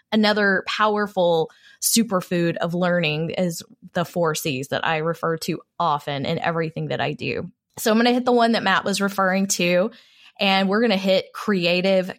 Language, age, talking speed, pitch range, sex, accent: English, 20-39, 180 wpm, 165-205 Hz, female, American